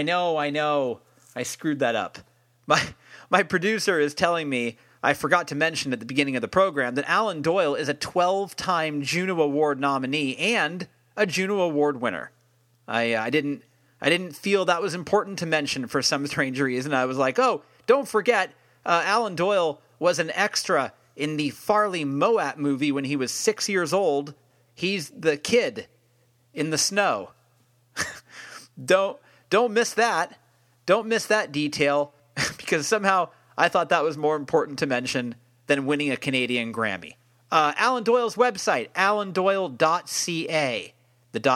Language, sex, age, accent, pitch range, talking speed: English, male, 40-59, American, 130-180 Hz, 160 wpm